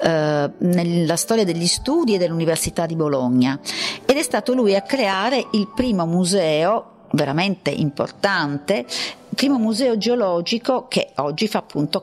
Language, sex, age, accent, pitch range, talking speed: Italian, female, 50-69, native, 160-205 Hz, 135 wpm